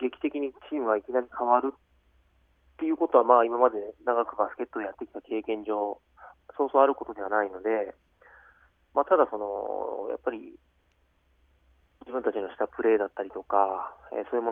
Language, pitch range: Japanese, 100-120 Hz